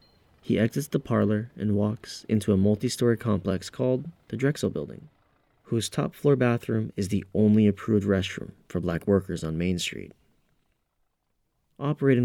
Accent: American